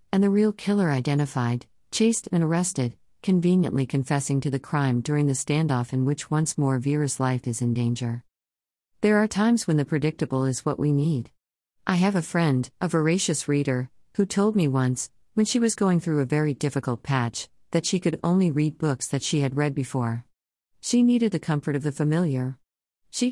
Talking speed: 190 wpm